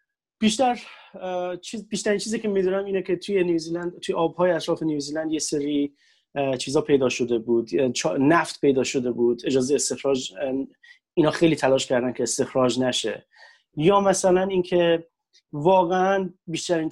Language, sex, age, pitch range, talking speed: Persian, male, 30-49, 125-165 Hz, 140 wpm